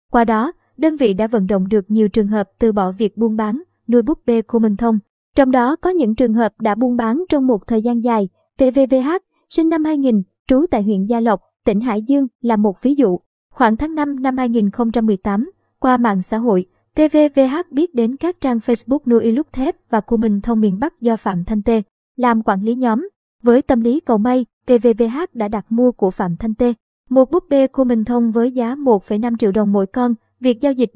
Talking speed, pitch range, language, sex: 220 wpm, 215-265 Hz, Vietnamese, male